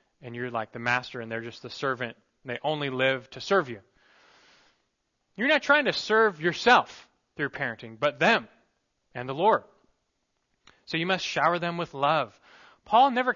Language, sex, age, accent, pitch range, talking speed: English, male, 20-39, American, 120-170 Hz, 175 wpm